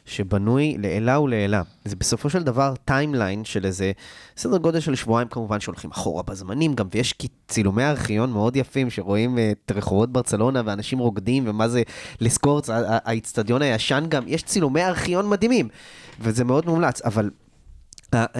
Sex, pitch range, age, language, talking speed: male, 115-160 Hz, 20-39, Hebrew, 160 wpm